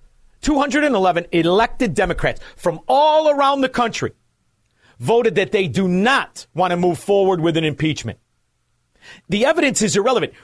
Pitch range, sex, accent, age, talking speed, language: 170-260 Hz, male, American, 40-59, 140 wpm, English